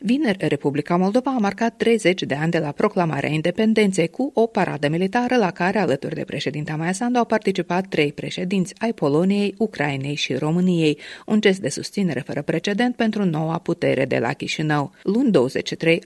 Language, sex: Romanian, female